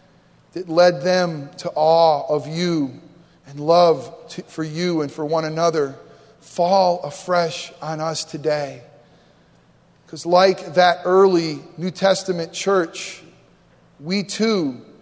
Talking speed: 120 wpm